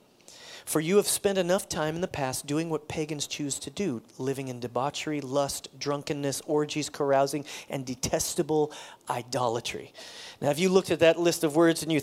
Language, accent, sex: English, American, male